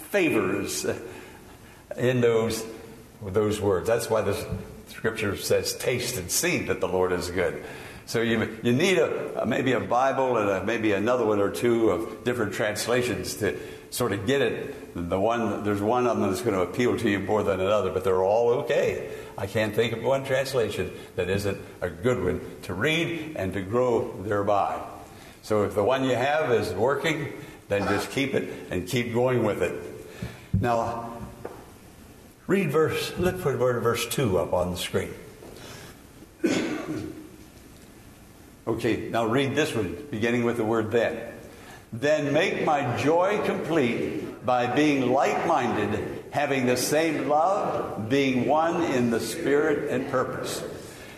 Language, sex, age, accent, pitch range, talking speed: English, male, 60-79, American, 110-150 Hz, 160 wpm